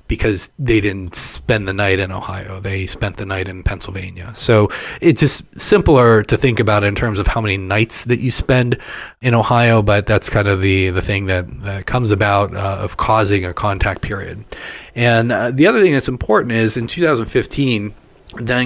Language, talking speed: English, 190 wpm